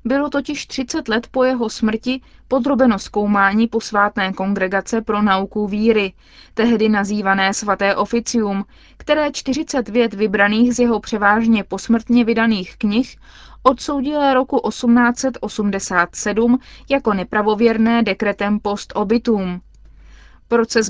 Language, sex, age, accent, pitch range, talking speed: Czech, female, 20-39, native, 205-245 Hz, 105 wpm